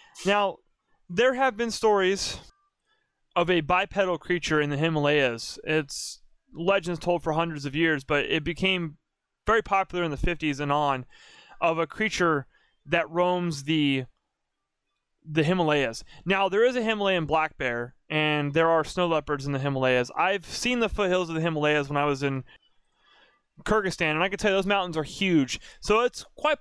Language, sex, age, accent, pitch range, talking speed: English, male, 20-39, American, 155-205 Hz, 170 wpm